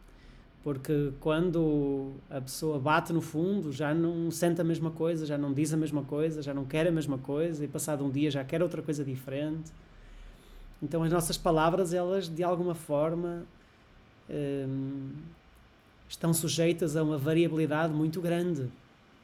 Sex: male